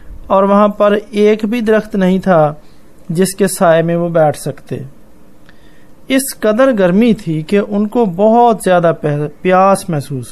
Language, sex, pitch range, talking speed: Hindi, male, 170-225 Hz, 140 wpm